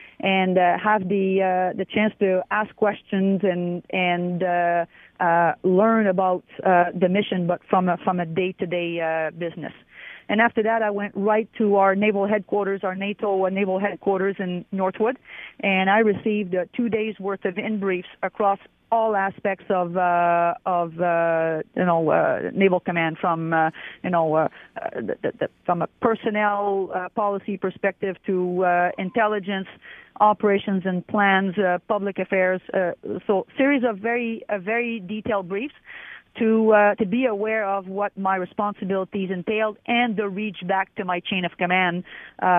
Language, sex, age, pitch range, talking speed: English, female, 30-49, 180-215 Hz, 165 wpm